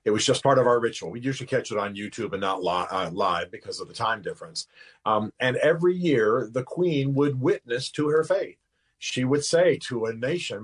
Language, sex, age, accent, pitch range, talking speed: English, male, 40-59, American, 115-140 Hz, 225 wpm